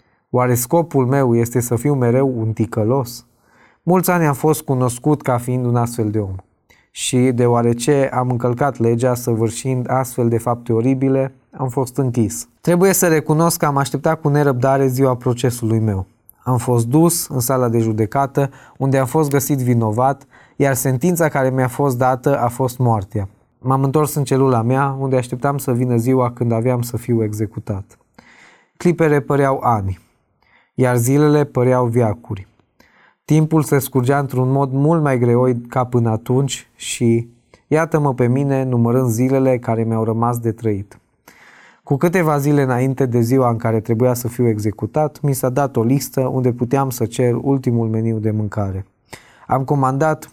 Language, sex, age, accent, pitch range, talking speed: Romanian, male, 20-39, native, 115-140 Hz, 160 wpm